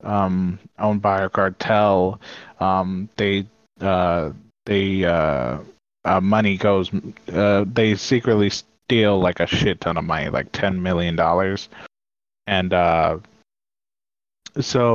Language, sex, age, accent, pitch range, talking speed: English, male, 20-39, American, 95-110 Hz, 120 wpm